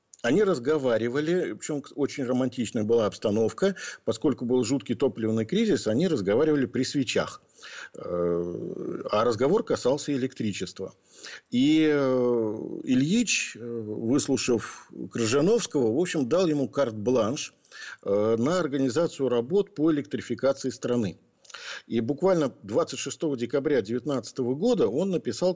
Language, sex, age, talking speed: Russian, male, 50-69, 95 wpm